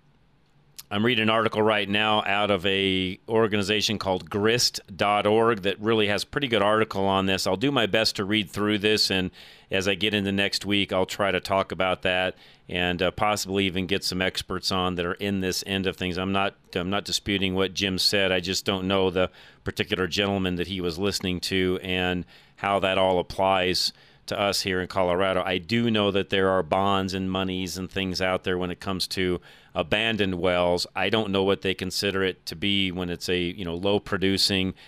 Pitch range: 90-105 Hz